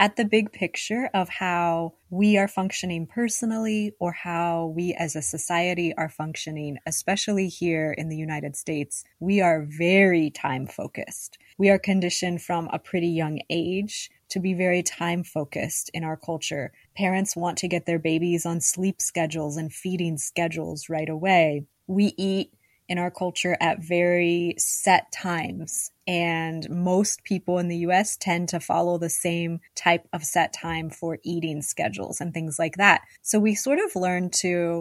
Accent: American